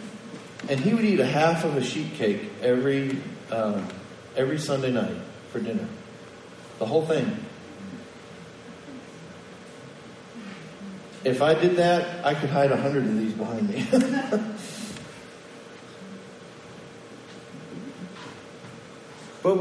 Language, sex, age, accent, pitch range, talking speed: English, male, 40-59, American, 135-205 Hz, 105 wpm